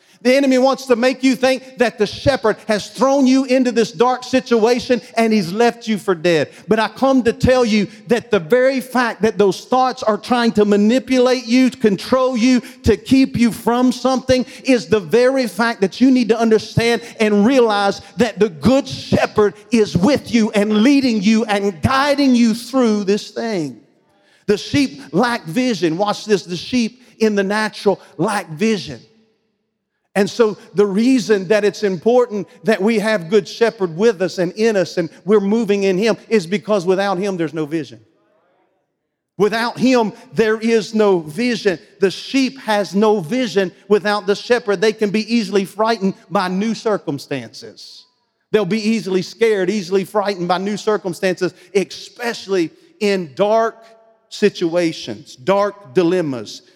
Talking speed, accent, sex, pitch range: 165 wpm, American, male, 195-235 Hz